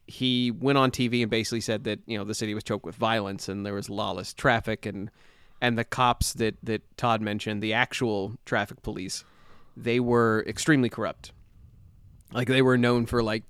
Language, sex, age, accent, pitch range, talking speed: English, male, 30-49, American, 105-120 Hz, 190 wpm